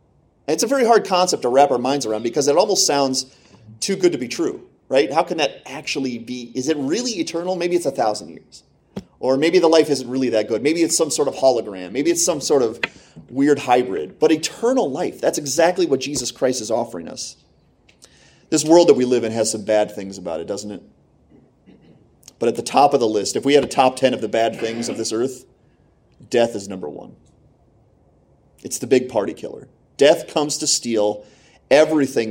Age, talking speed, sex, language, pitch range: 30-49, 210 wpm, male, English, 115-155 Hz